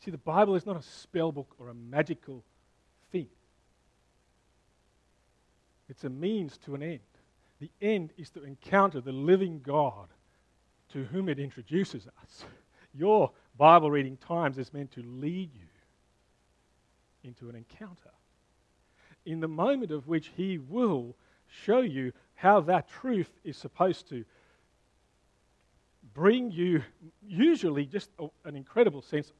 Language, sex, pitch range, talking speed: English, male, 130-180 Hz, 135 wpm